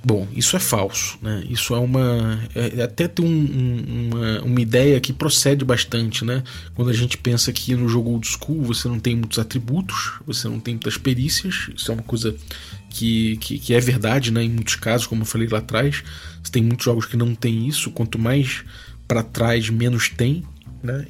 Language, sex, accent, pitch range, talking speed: Portuguese, male, Brazilian, 115-135 Hz, 205 wpm